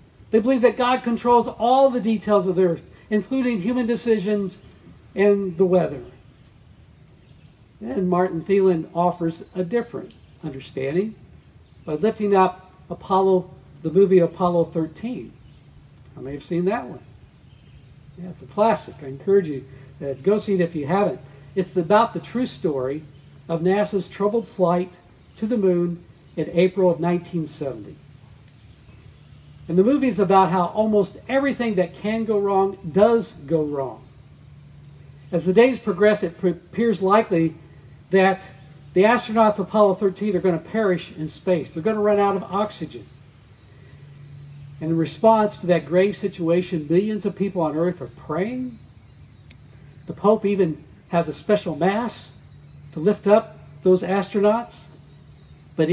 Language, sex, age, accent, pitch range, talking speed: English, male, 60-79, American, 145-205 Hz, 145 wpm